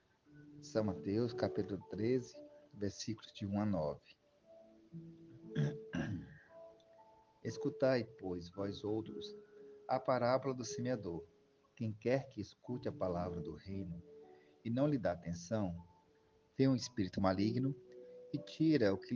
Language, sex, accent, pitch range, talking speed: Portuguese, male, Brazilian, 100-145 Hz, 120 wpm